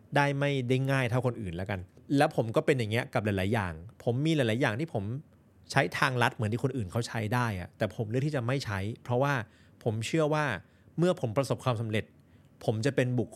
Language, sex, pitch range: Thai, male, 105-135 Hz